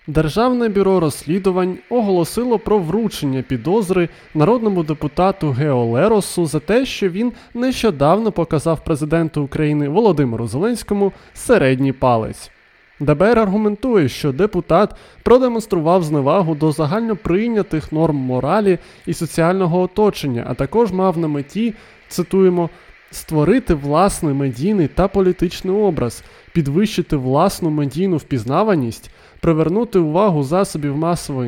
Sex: male